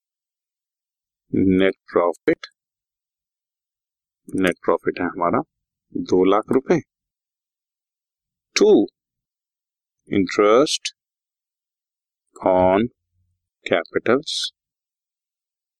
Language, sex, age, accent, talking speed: Hindi, male, 50-69, native, 50 wpm